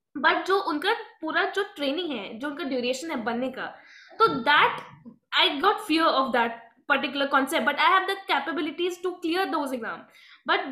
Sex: female